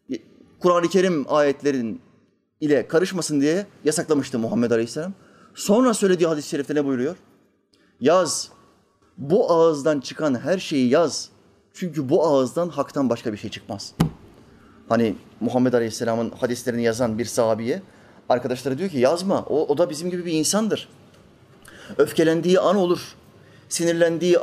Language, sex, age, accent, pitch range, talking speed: Turkish, male, 30-49, native, 125-180 Hz, 130 wpm